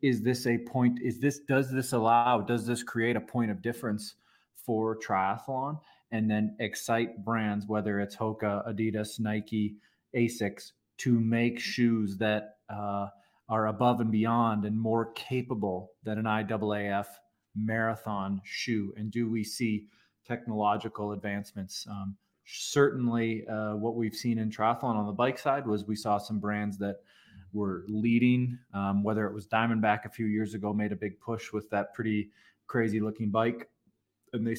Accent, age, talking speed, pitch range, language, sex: American, 30-49, 160 wpm, 105-120 Hz, English, male